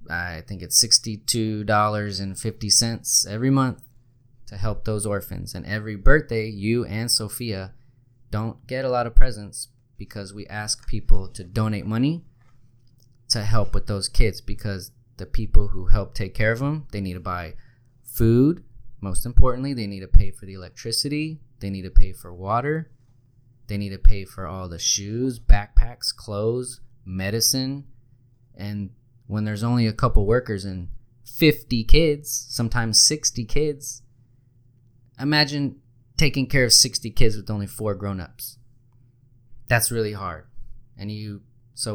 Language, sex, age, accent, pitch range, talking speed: English, male, 20-39, American, 105-125 Hz, 145 wpm